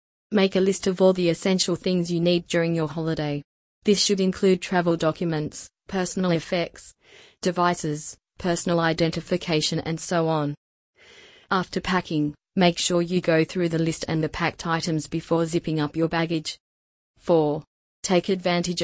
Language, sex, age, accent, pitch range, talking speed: English, female, 30-49, Australian, 160-175 Hz, 150 wpm